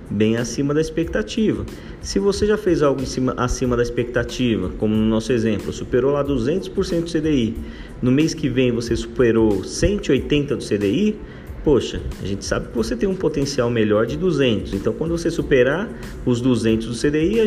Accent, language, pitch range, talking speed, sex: Brazilian, Portuguese, 125-185 Hz, 180 wpm, male